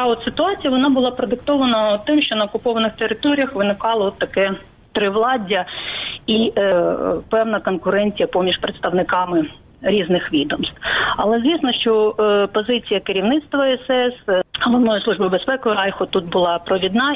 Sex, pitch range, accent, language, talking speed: female, 185-230 Hz, native, Ukrainian, 120 wpm